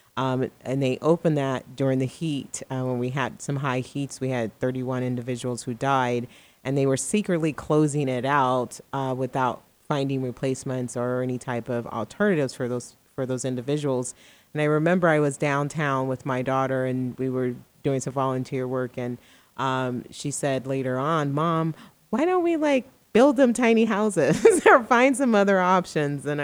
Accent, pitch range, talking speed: American, 130-155 Hz, 180 wpm